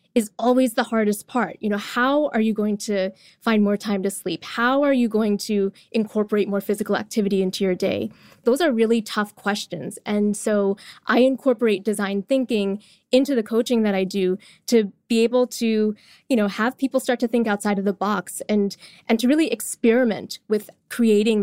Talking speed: 190 wpm